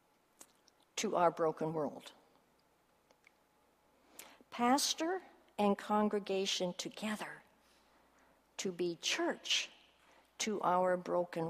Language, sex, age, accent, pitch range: Korean, female, 60-79, American, 200-275 Hz